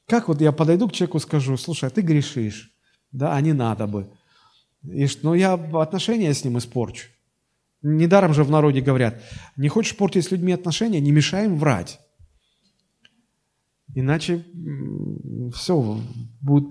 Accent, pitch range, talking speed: native, 130-180 Hz, 145 wpm